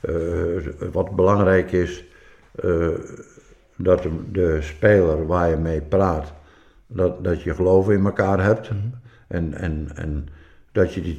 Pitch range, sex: 85-105 Hz, male